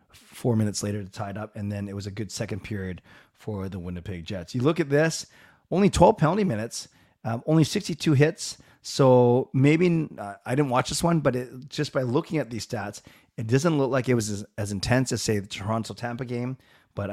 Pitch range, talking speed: 100-125 Hz, 210 wpm